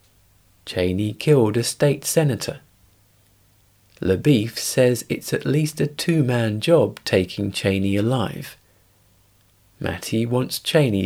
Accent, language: British, English